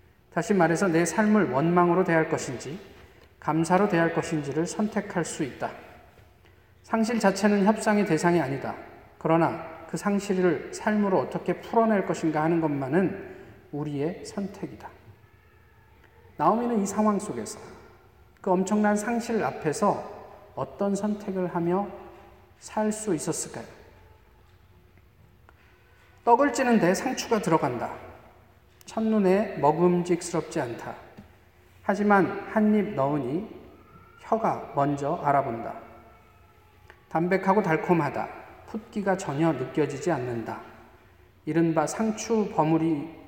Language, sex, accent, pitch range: Korean, male, native, 130-195 Hz